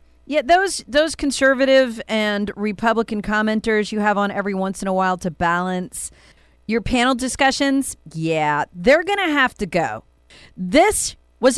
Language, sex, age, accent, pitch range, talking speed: English, female, 40-59, American, 175-270 Hz, 150 wpm